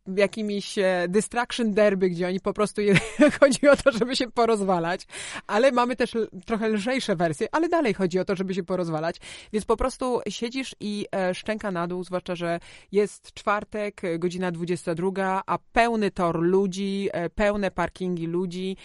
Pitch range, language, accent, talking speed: 170-215 Hz, Polish, native, 160 wpm